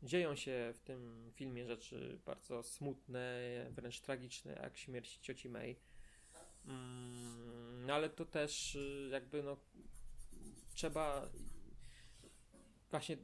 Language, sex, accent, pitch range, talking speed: Polish, male, native, 125-140 Hz, 100 wpm